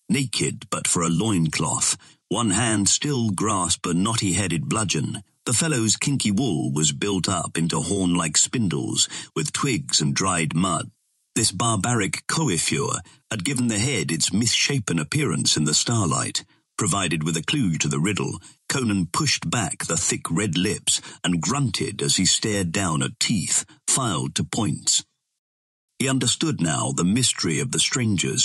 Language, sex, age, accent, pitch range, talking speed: English, male, 50-69, British, 80-115 Hz, 155 wpm